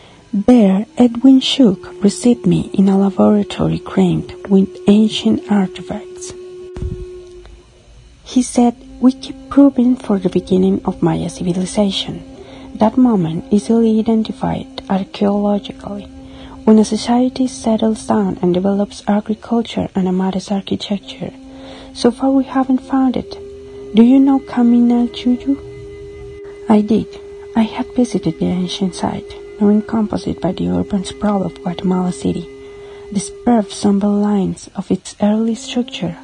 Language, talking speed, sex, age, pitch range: English, 125 wpm, female, 40-59, 185-235 Hz